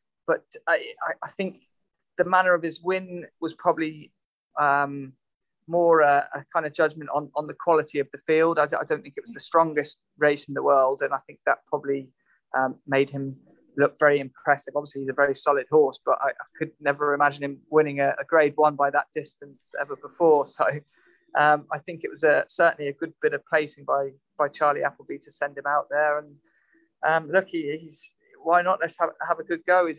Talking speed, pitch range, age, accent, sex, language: 210 wpm, 145-165 Hz, 20-39, British, male, English